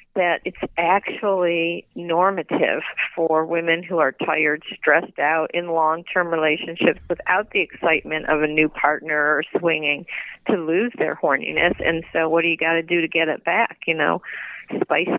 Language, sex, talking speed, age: English, female, 165 wpm, 50-69